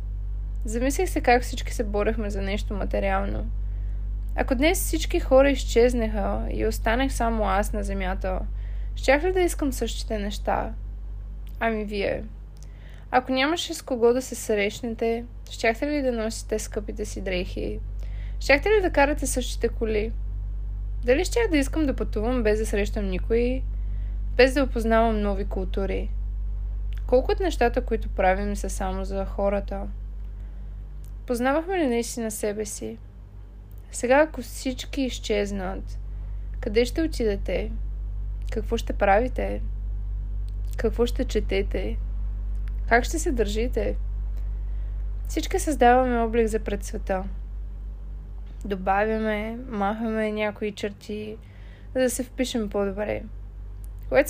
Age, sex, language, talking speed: 20-39, female, Bulgarian, 120 wpm